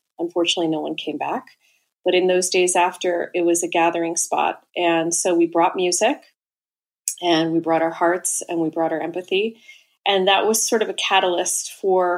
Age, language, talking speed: 30-49, English, 185 wpm